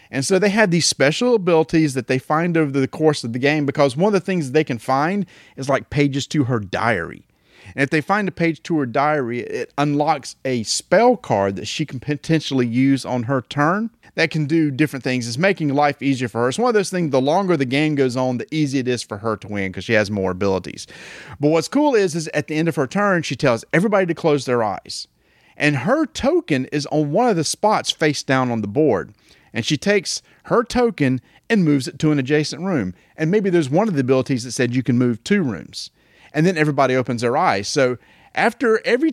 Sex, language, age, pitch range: male, English, 40-59, 130-175 Hz